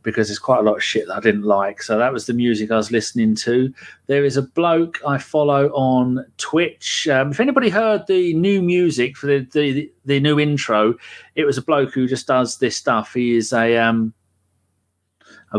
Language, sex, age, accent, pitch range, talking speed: English, male, 40-59, British, 115-150 Hz, 215 wpm